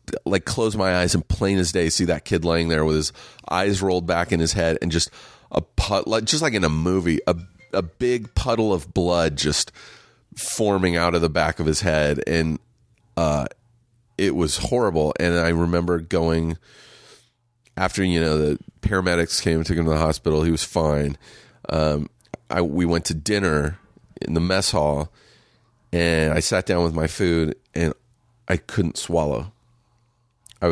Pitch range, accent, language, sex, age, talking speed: 80-100 Hz, American, English, male, 30-49, 180 wpm